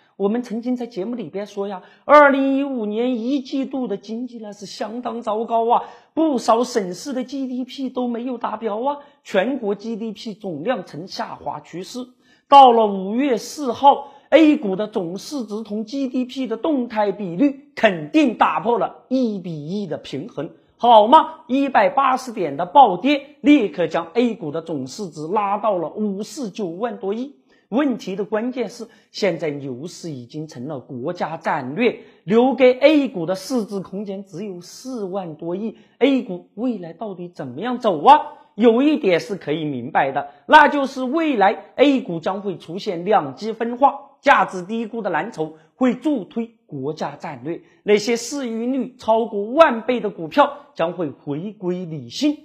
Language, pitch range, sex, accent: Chinese, 190-260 Hz, male, native